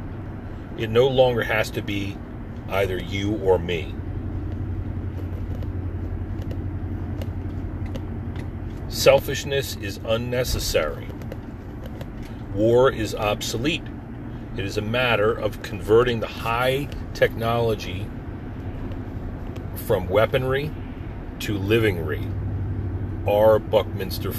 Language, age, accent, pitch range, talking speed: English, 40-59, American, 95-110 Hz, 75 wpm